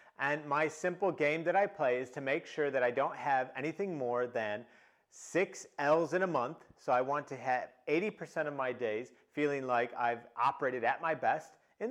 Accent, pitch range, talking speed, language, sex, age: American, 130-180 Hz, 200 wpm, English, male, 40-59